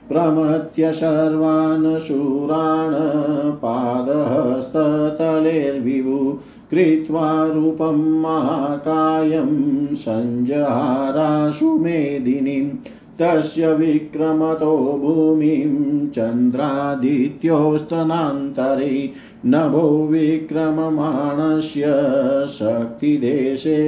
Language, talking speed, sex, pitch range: Hindi, 35 wpm, male, 140-160 Hz